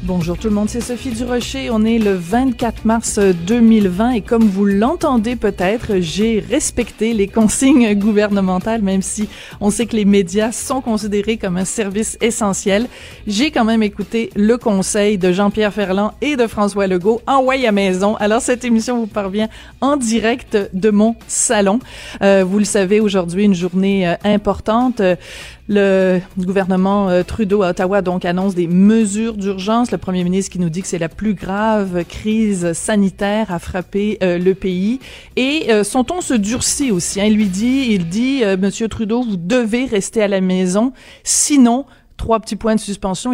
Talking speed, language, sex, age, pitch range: 175 wpm, French, female, 30-49, 195-230 Hz